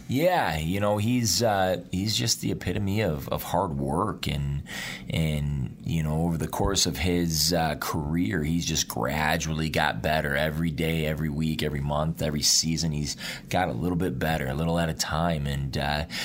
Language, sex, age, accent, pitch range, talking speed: English, male, 30-49, American, 75-85 Hz, 185 wpm